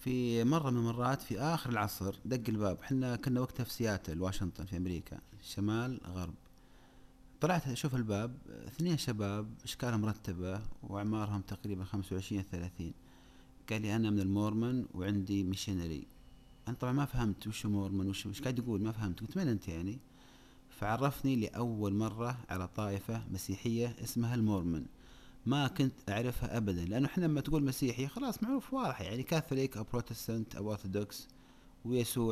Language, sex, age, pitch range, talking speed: Arabic, male, 30-49, 100-125 Hz, 145 wpm